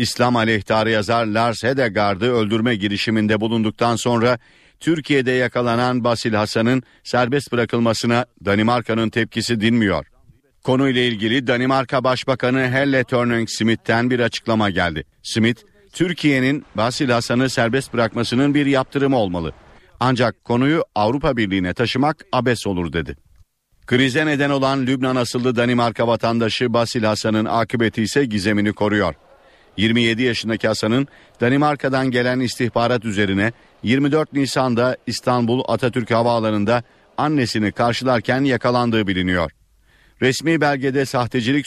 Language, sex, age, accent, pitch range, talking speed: Turkish, male, 50-69, native, 110-130 Hz, 110 wpm